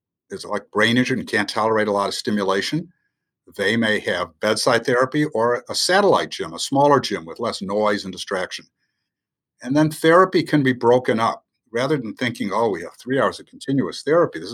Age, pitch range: 60-79, 105-145 Hz